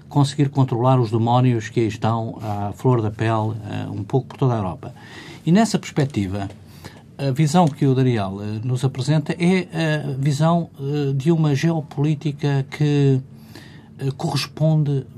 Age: 50-69